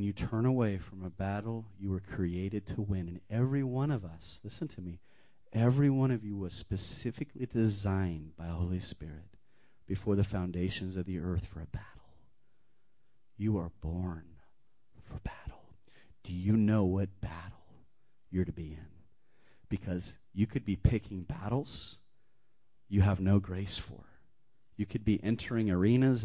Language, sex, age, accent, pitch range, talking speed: English, male, 30-49, American, 90-110 Hz, 160 wpm